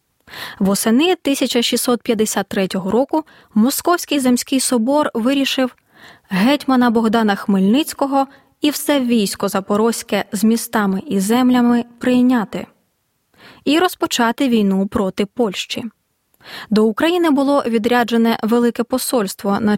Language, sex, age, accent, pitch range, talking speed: Ukrainian, female, 20-39, native, 215-275 Hz, 95 wpm